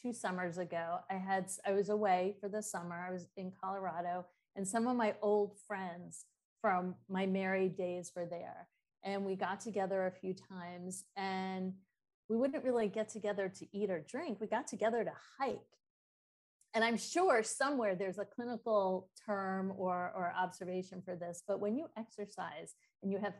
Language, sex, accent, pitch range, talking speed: English, female, American, 190-235 Hz, 175 wpm